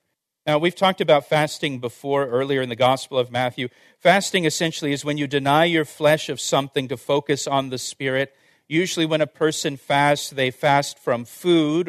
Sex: male